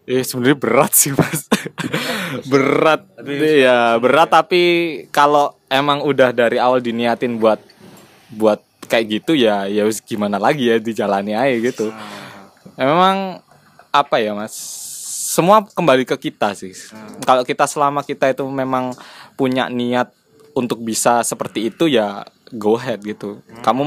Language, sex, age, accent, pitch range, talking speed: Indonesian, male, 20-39, native, 115-145 Hz, 135 wpm